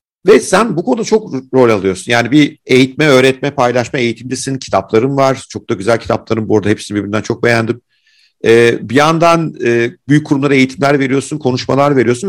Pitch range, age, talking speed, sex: 120-160 Hz, 50-69, 165 wpm, male